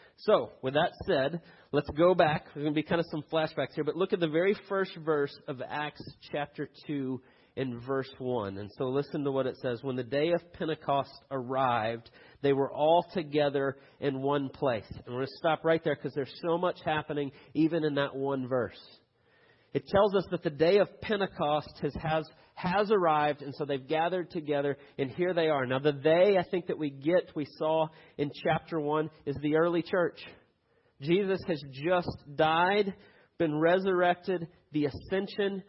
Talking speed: 190 wpm